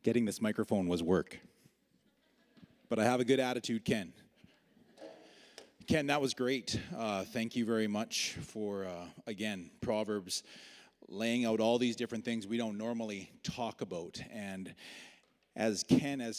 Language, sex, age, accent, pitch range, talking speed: English, male, 30-49, American, 100-120 Hz, 145 wpm